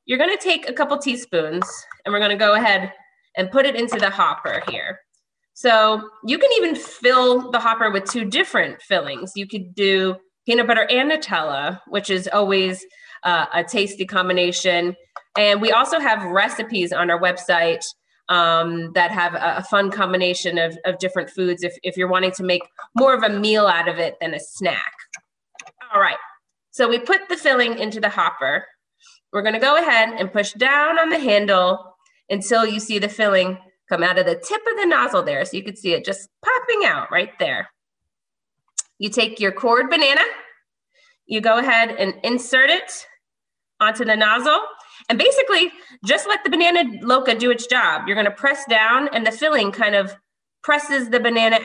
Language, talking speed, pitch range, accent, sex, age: English, 185 wpm, 190-275 Hz, American, female, 30-49